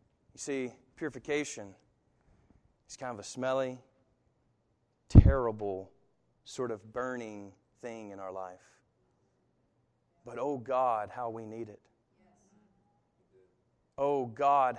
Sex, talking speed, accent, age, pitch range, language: male, 100 wpm, American, 40-59, 115-140 Hz, English